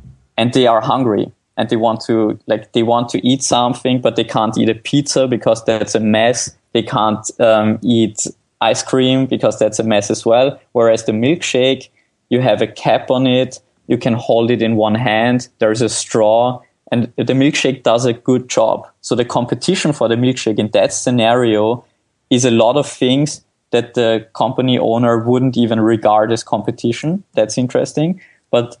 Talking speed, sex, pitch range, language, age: 185 wpm, male, 115-130 Hz, English, 20-39